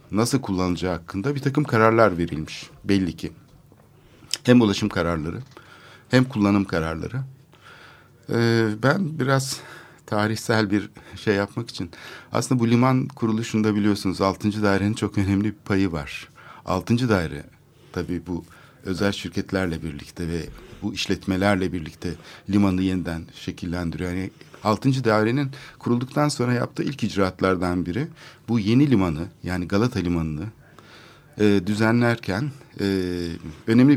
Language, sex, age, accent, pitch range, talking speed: Turkish, male, 60-79, native, 90-120 Hz, 120 wpm